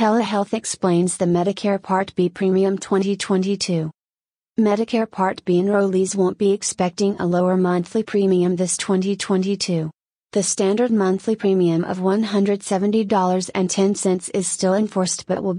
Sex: female